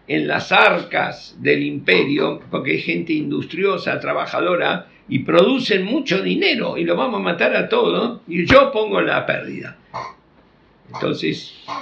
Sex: male